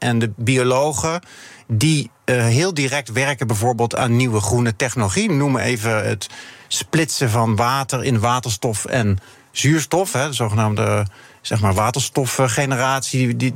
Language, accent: Dutch, Dutch